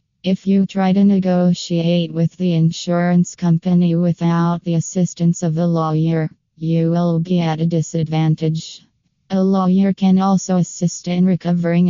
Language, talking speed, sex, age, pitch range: English, 140 wpm, female, 20-39, 165-180 Hz